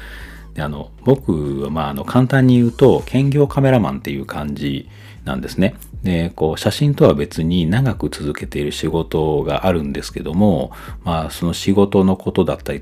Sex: male